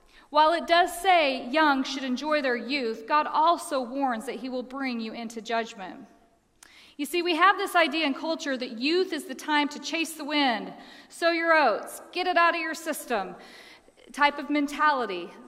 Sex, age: female, 40-59